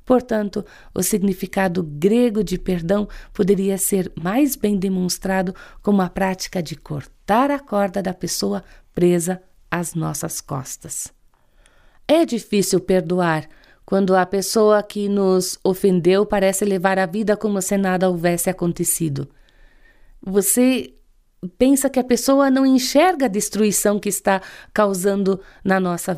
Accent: Brazilian